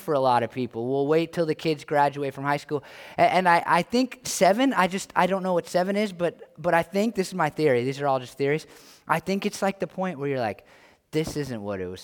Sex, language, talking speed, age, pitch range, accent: male, English, 270 wpm, 20-39, 135-180 Hz, American